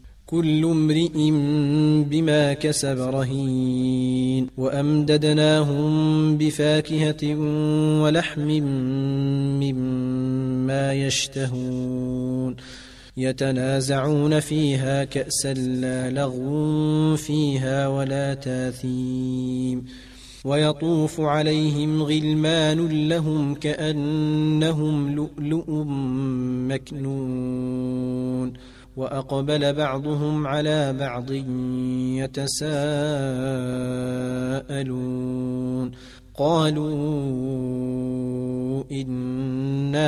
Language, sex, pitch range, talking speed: Arabic, male, 130-150 Hz, 50 wpm